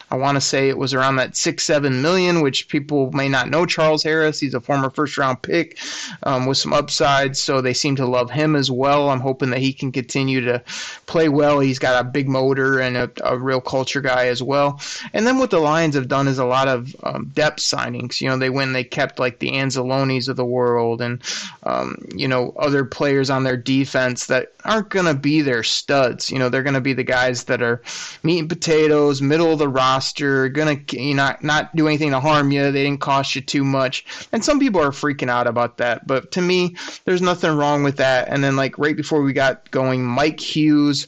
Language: English